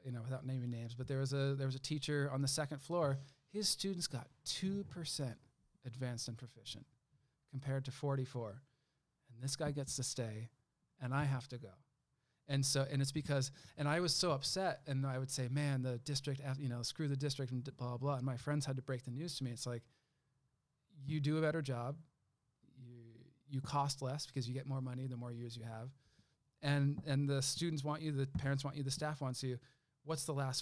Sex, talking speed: male, 225 wpm